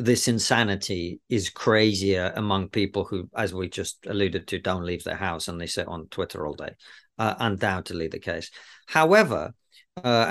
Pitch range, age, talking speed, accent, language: 100-120 Hz, 40-59, 170 wpm, British, English